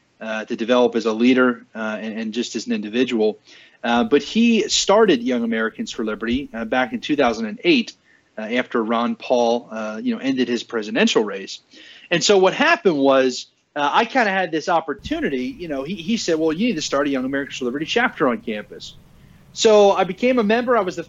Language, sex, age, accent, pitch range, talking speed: English, male, 30-49, American, 125-175 Hz, 210 wpm